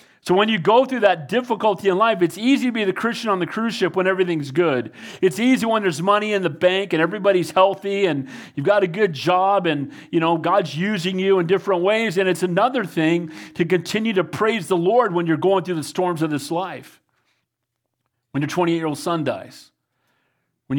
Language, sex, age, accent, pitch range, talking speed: English, male, 40-59, American, 145-195 Hz, 210 wpm